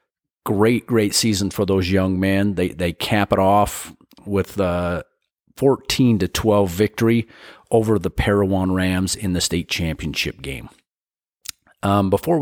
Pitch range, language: 95-110 Hz, English